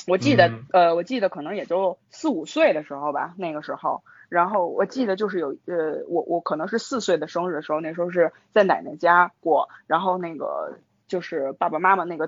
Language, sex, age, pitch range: Chinese, female, 20-39, 175-275 Hz